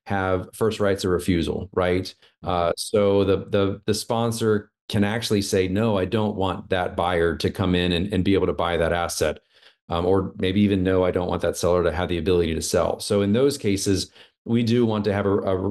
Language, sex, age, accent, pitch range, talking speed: English, male, 30-49, American, 95-110 Hz, 225 wpm